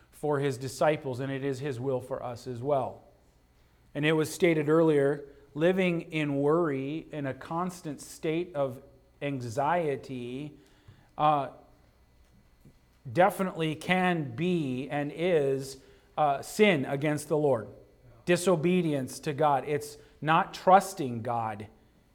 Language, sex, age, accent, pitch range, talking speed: English, male, 40-59, American, 135-175 Hz, 120 wpm